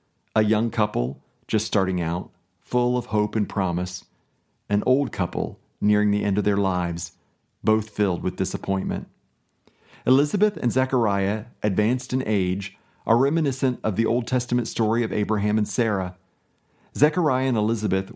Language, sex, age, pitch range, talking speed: English, male, 40-59, 95-125 Hz, 145 wpm